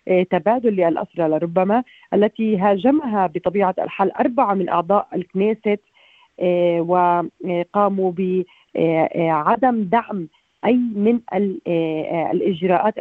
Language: Arabic